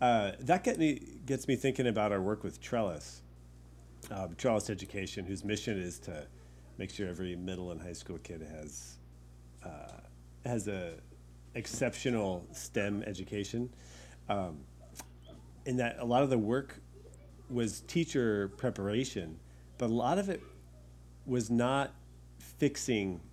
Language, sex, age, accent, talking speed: English, male, 40-59, American, 135 wpm